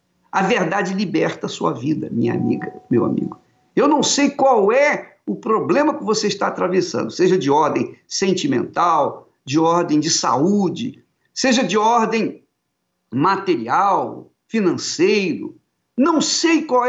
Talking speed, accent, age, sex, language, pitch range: 130 wpm, Brazilian, 50-69, male, Portuguese, 165-250 Hz